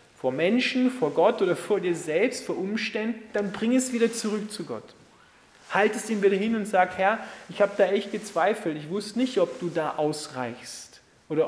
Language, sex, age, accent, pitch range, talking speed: German, male, 30-49, German, 150-215 Hz, 200 wpm